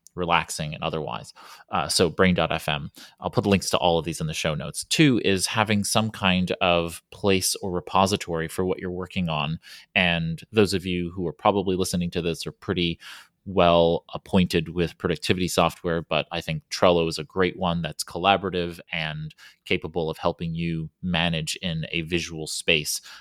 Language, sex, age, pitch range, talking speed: English, male, 30-49, 85-95 Hz, 180 wpm